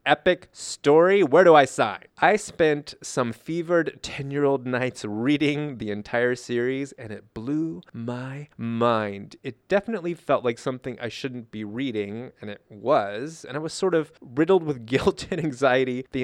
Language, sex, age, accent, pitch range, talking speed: English, male, 30-49, American, 120-160 Hz, 165 wpm